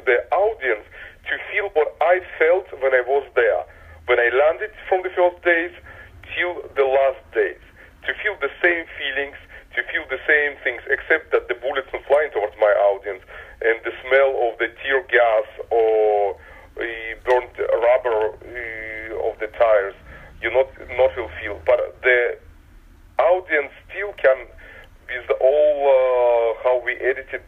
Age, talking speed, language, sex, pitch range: 40-59, 160 wpm, English, male, 115-175 Hz